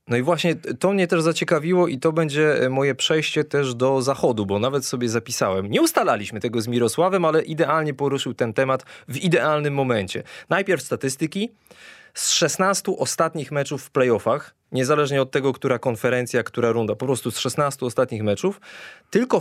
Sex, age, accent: male, 20-39, native